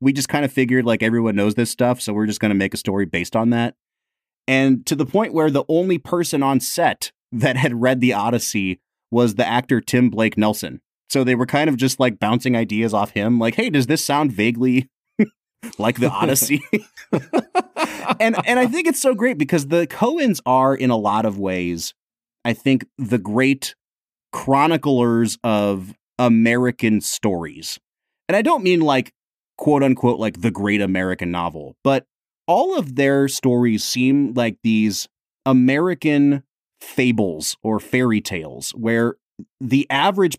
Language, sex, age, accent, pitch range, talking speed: English, male, 30-49, American, 110-140 Hz, 170 wpm